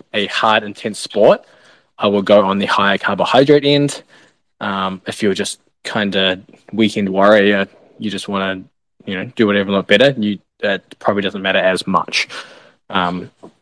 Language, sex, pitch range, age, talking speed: English, male, 100-115 Hz, 20-39, 170 wpm